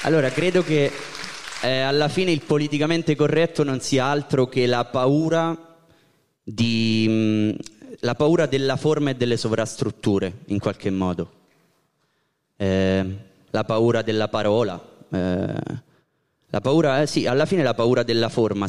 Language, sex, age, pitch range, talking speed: Italian, male, 20-39, 105-130 Hz, 140 wpm